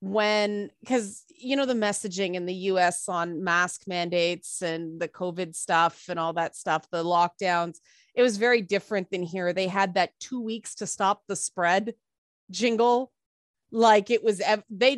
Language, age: English, 30-49